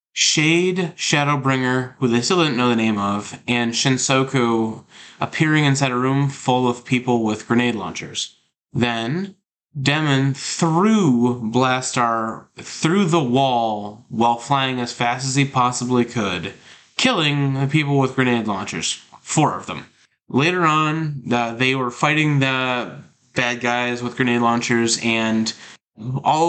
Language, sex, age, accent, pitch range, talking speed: English, male, 20-39, American, 115-140 Hz, 135 wpm